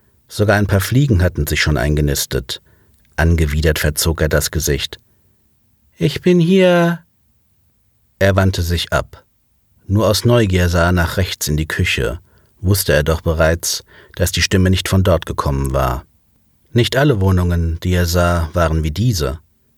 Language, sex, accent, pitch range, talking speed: German, male, German, 80-105 Hz, 155 wpm